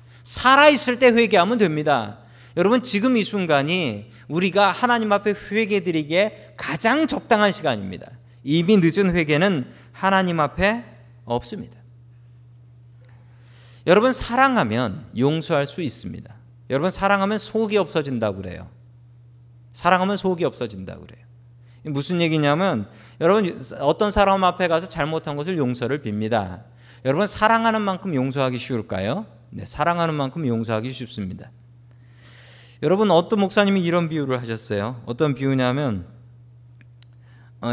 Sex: male